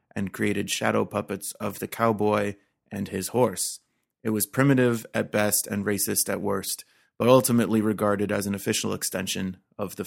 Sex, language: male, English